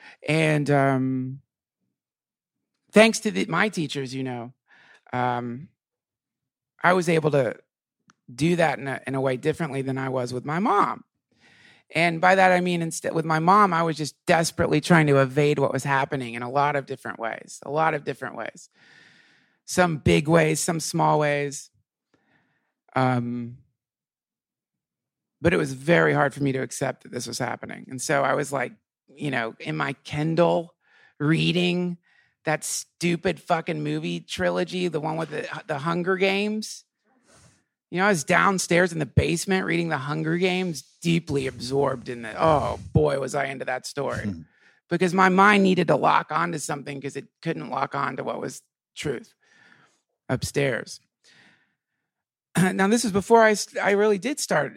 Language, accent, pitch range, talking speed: English, American, 135-175 Hz, 165 wpm